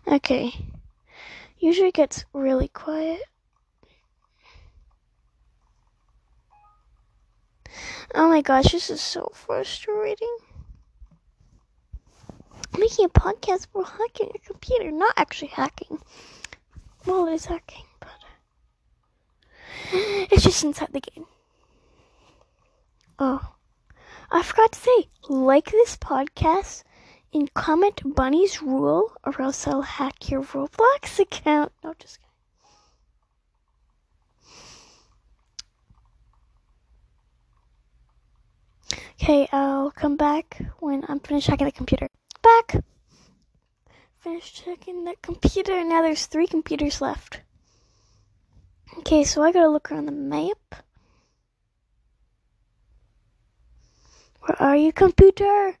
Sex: female